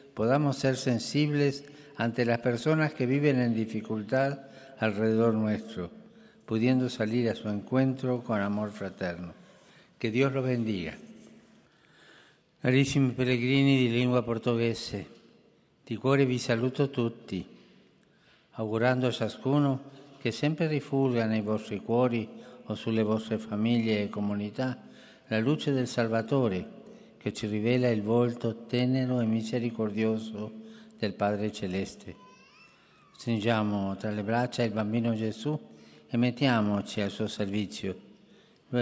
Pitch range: 110-130 Hz